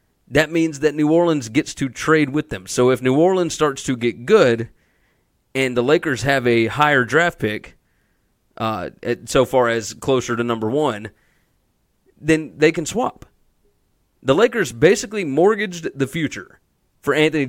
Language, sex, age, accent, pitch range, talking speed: English, male, 30-49, American, 120-150 Hz, 160 wpm